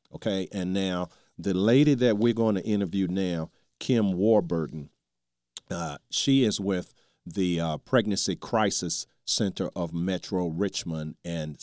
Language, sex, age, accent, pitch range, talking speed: English, male, 40-59, American, 85-105 Hz, 135 wpm